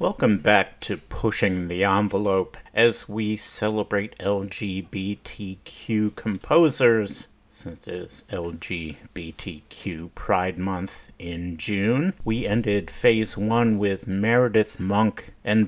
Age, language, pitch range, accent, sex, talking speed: 50-69, English, 100-115 Hz, American, male, 105 wpm